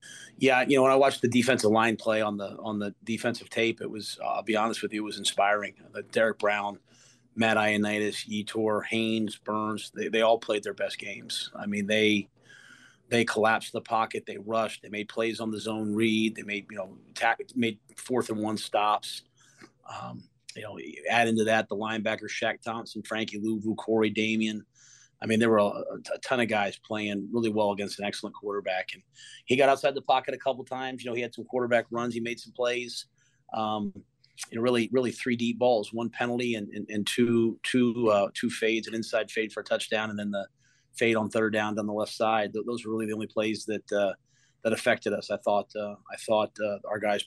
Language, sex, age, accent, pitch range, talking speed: English, male, 30-49, American, 105-120 Hz, 210 wpm